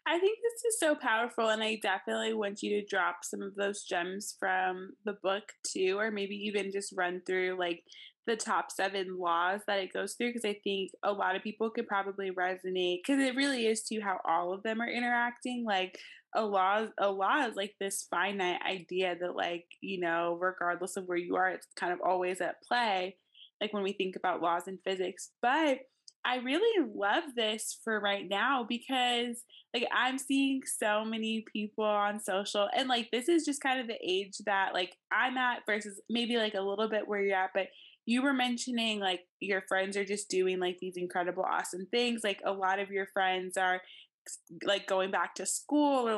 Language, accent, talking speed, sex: English, American, 205 wpm, female